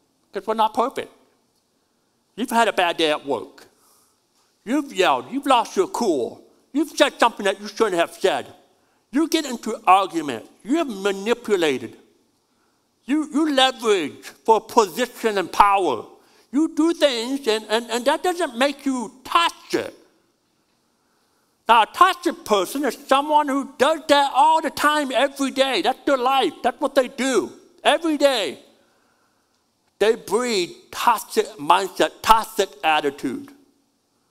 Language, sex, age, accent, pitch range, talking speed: English, male, 60-79, American, 215-295 Hz, 140 wpm